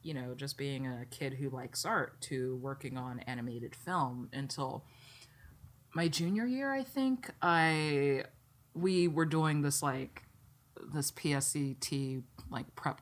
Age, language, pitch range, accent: 30-49, English, 125-150 Hz, American